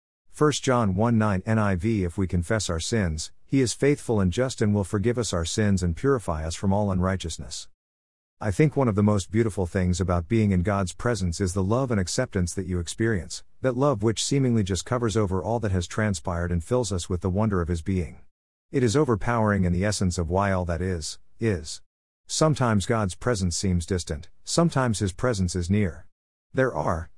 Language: English